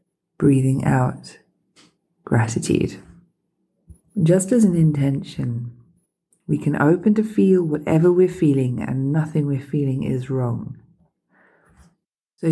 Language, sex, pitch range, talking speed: English, female, 130-170 Hz, 105 wpm